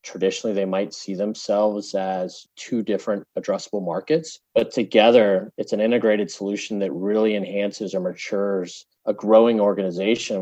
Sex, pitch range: male, 100-130 Hz